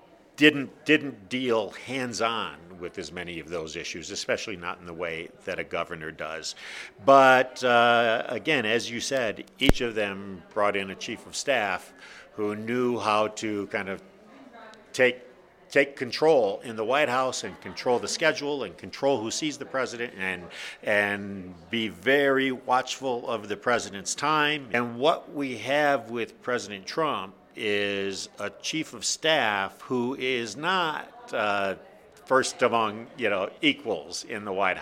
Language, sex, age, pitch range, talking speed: English, male, 50-69, 100-135 Hz, 155 wpm